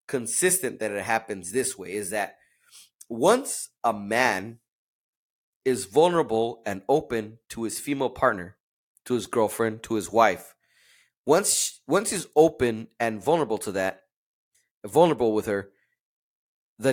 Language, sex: English, male